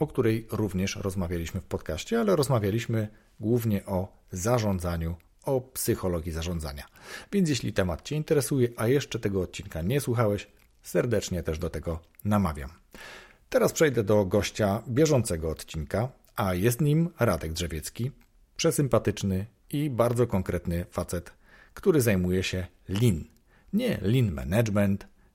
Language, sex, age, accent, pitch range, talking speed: Polish, male, 40-59, native, 90-120 Hz, 125 wpm